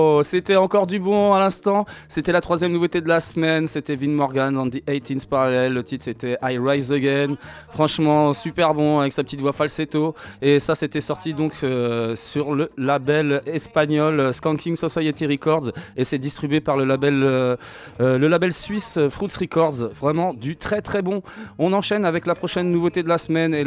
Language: French